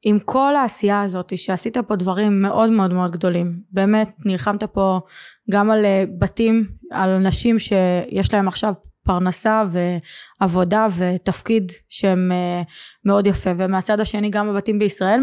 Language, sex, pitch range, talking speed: Hebrew, female, 190-230 Hz, 130 wpm